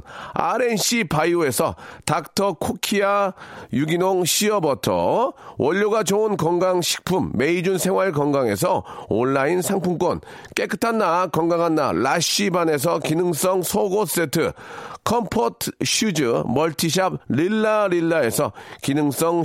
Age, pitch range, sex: 40-59, 165-210 Hz, male